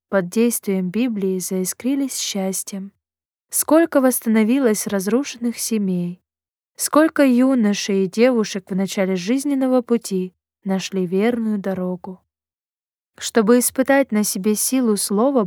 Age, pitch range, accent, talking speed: 20-39, 185-235 Hz, native, 100 wpm